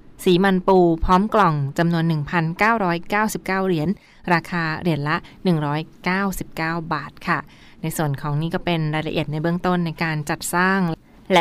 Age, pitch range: 20-39, 155-185 Hz